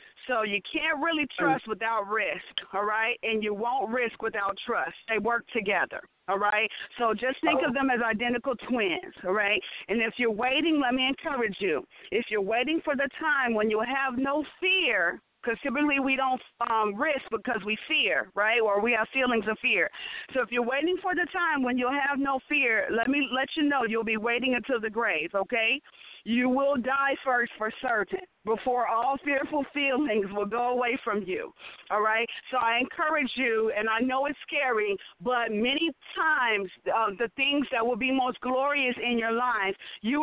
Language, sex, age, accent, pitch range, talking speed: English, female, 40-59, American, 220-275 Hz, 195 wpm